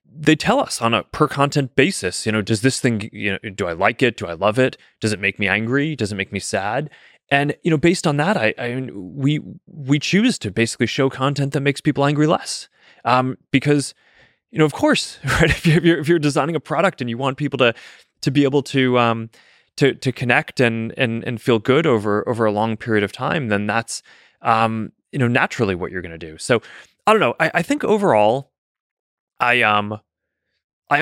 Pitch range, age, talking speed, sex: 100-140 Hz, 20-39, 220 wpm, male